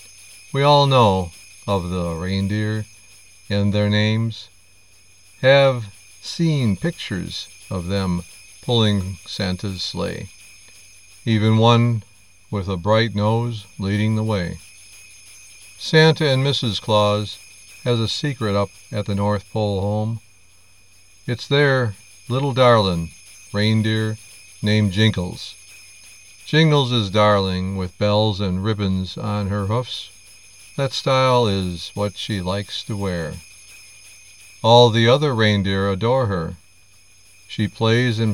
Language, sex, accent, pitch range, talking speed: English, male, American, 90-110 Hz, 115 wpm